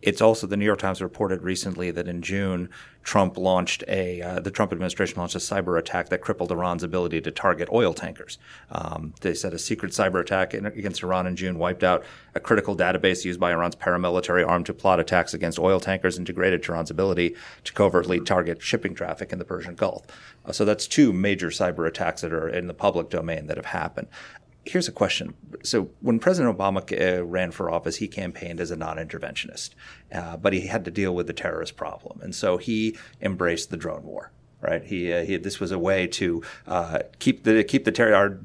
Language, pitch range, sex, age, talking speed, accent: English, 90-100 Hz, male, 30-49, 210 wpm, American